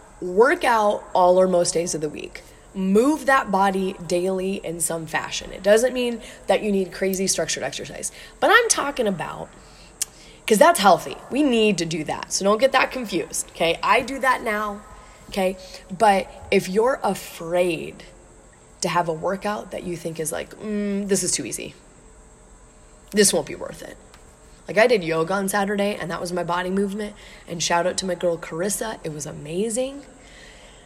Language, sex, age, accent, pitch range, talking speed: English, female, 20-39, American, 165-210 Hz, 180 wpm